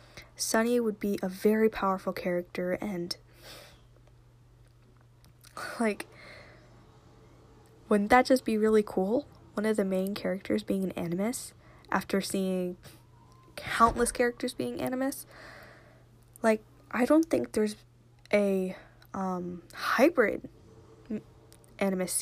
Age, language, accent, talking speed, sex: 10-29, English, American, 105 wpm, female